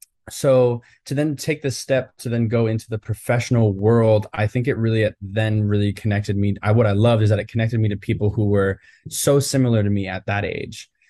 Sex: male